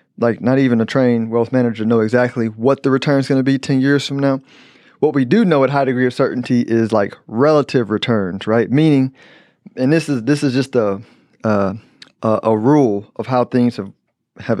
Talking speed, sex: 205 wpm, male